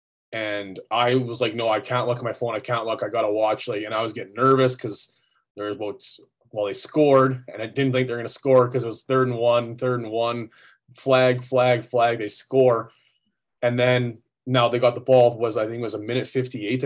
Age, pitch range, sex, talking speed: 20-39, 110-130 Hz, male, 240 wpm